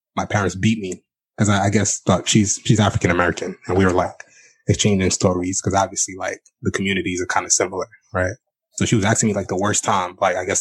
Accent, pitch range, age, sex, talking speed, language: American, 95-110 Hz, 20-39, male, 240 wpm, English